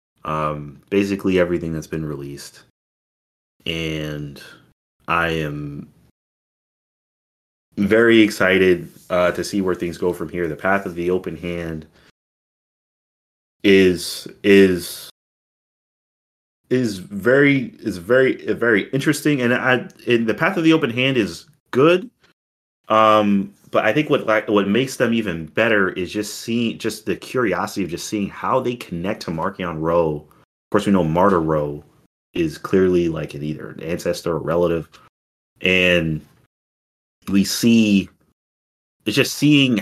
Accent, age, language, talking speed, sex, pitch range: American, 30-49, English, 140 wpm, male, 80-105 Hz